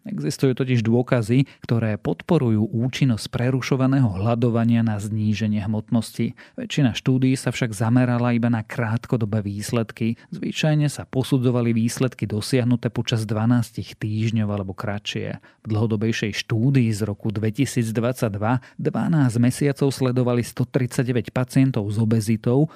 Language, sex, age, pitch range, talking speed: Slovak, male, 40-59, 115-130 Hz, 115 wpm